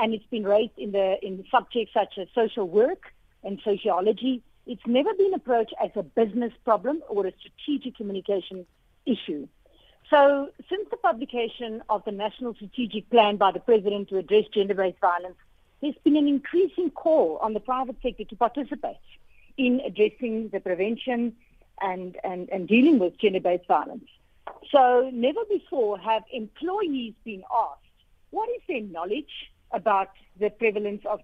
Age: 50-69